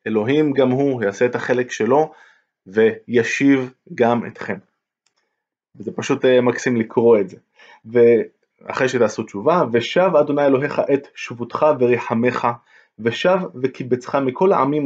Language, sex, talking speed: Hebrew, male, 115 wpm